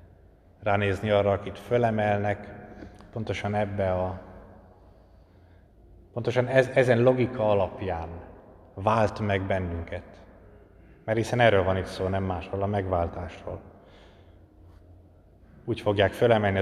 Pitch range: 95-110 Hz